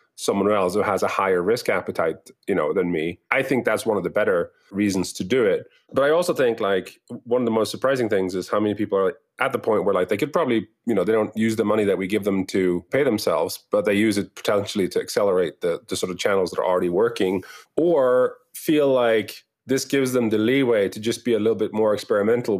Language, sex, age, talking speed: English, male, 30-49, 245 wpm